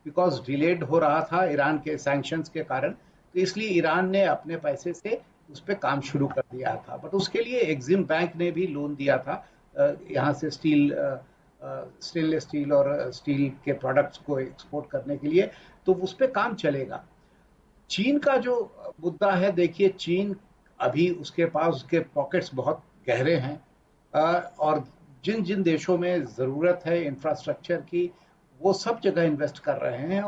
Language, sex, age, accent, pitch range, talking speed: Hindi, male, 60-79, native, 150-190 Hz, 165 wpm